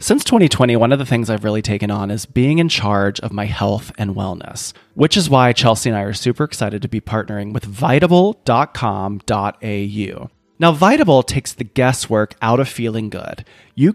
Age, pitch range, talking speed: 30-49, 105-145 Hz, 185 wpm